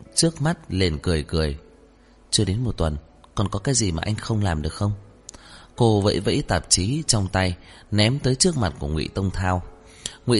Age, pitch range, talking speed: 20-39, 85-110 Hz, 200 wpm